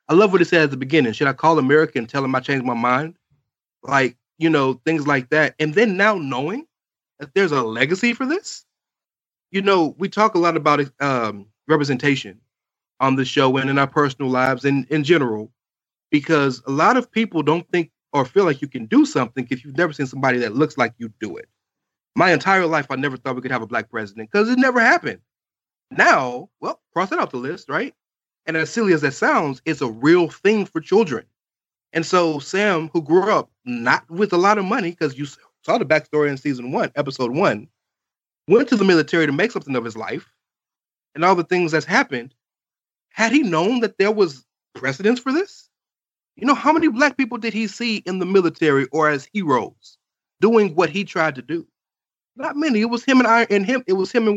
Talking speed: 215 wpm